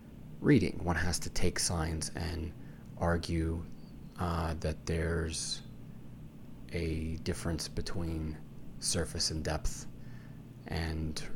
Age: 30-49